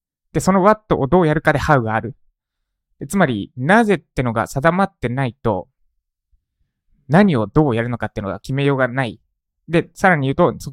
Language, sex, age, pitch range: Japanese, male, 20-39, 110-155 Hz